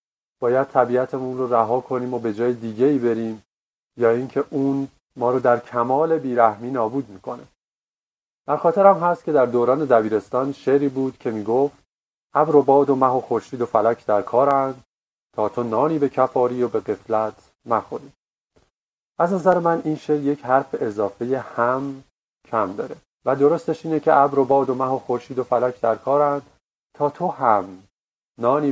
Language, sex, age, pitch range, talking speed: Persian, male, 40-59, 115-150 Hz, 170 wpm